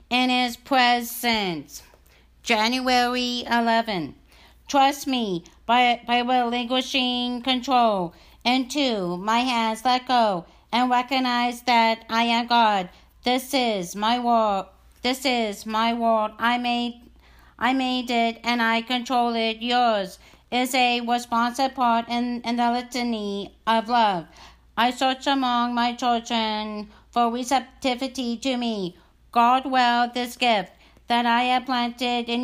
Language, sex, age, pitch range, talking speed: English, female, 50-69, 225-250 Hz, 125 wpm